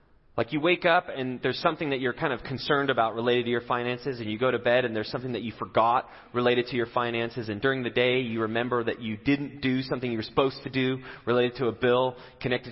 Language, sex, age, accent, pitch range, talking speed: English, male, 30-49, American, 120-155 Hz, 250 wpm